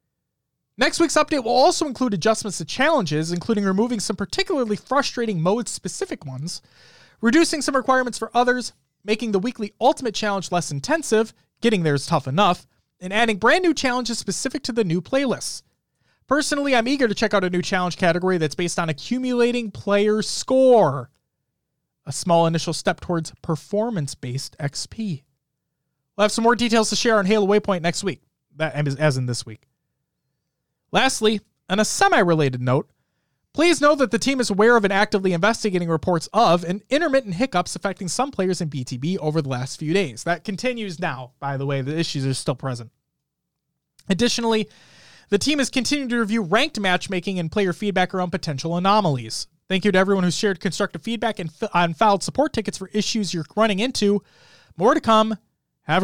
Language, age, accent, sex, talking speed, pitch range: English, 20-39, American, male, 170 wpm, 160-235 Hz